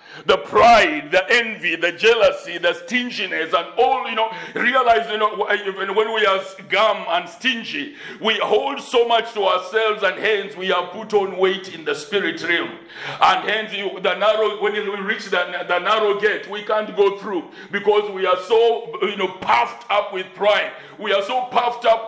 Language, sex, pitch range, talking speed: English, male, 185-230 Hz, 190 wpm